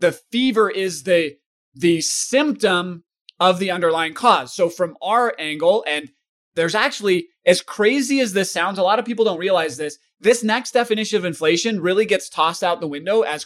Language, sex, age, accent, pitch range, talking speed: English, male, 30-49, American, 165-220 Hz, 185 wpm